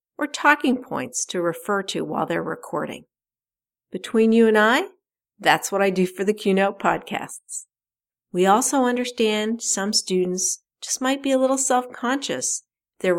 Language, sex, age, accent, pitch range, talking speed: English, female, 50-69, American, 185-250 Hz, 150 wpm